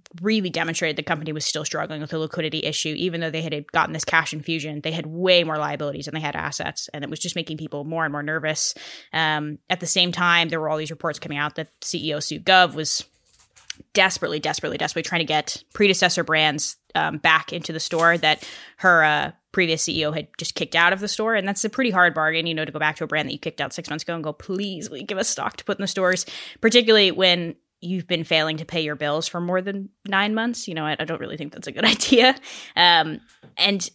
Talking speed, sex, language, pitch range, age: 245 wpm, female, English, 155-185 Hz, 10-29